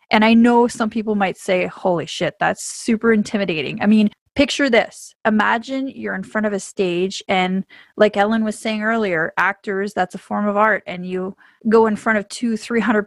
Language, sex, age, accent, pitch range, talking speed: English, female, 20-39, American, 200-230 Hz, 195 wpm